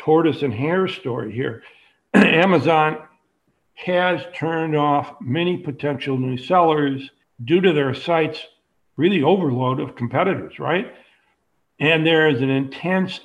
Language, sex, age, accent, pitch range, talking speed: English, male, 60-79, American, 135-165 Hz, 120 wpm